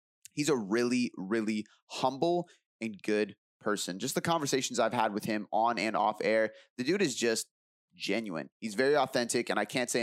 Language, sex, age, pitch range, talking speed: English, male, 20-39, 105-130 Hz, 185 wpm